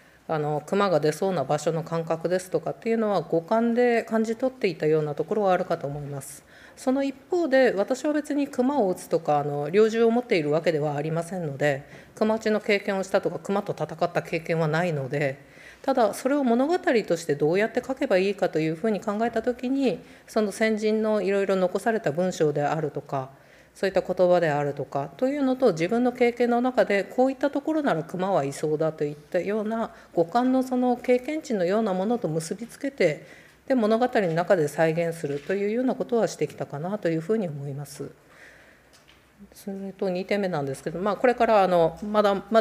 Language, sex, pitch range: Japanese, female, 160-230 Hz